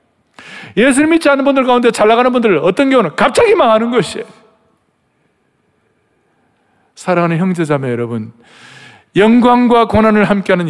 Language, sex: Korean, male